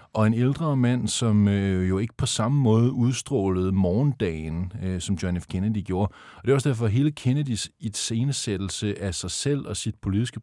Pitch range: 105-125 Hz